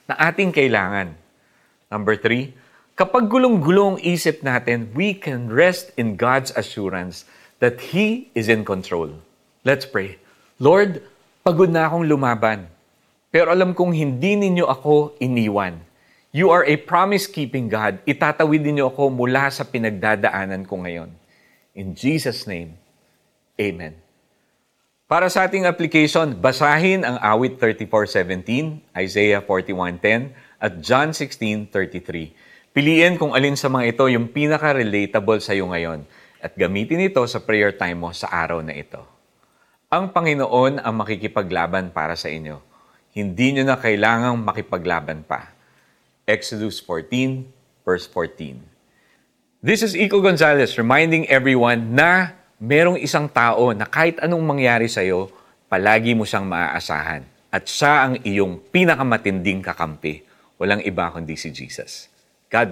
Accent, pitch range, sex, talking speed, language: native, 95-150 Hz, male, 125 wpm, Filipino